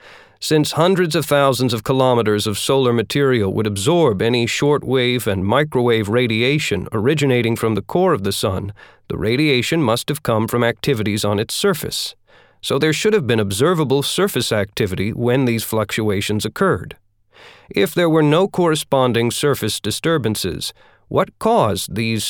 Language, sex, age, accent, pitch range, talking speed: English, male, 40-59, American, 105-140 Hz, 150 wpm